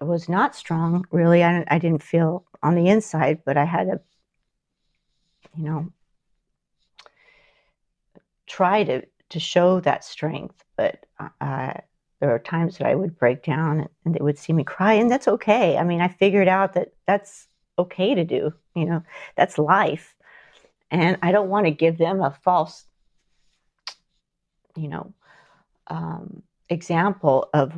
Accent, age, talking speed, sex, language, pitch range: American, 40-59, 150 wpm, female, English, 155-180 Hz